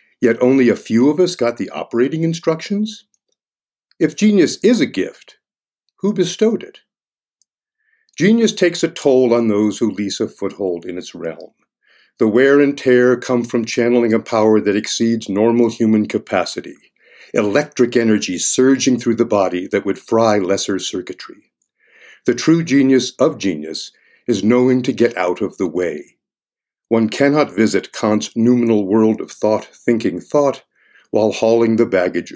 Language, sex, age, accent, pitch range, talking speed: English, male, 50-69, American, 110-160 Hz, 155 wpm